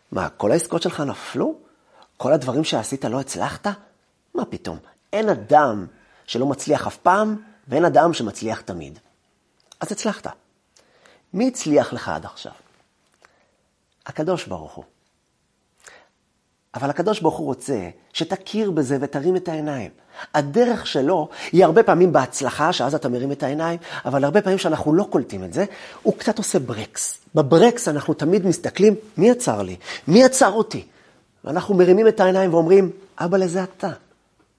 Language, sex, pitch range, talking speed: Hebrew, male, 145-220 Hz, 145 wpm